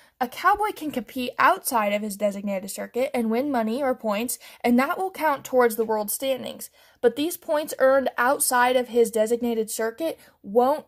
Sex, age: female, 10-29